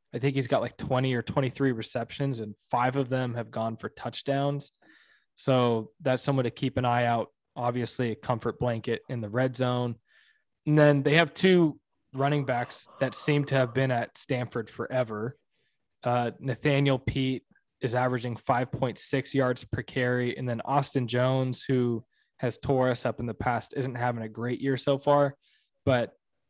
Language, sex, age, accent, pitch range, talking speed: English, male, 20-39, American, 120-135 Hz, 175 wpm